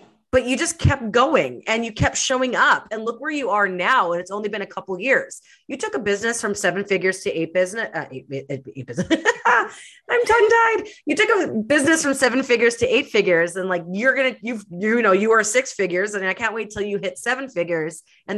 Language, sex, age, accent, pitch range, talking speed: English, female, 30-49, American, 175-245 Hz, 230 wpm